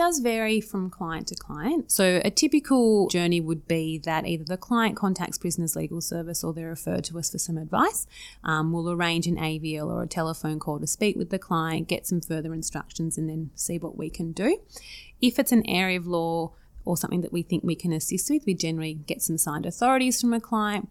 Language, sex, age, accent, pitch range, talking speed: English, female, 30-49, Australian, 160-195 Hz, 220 wpm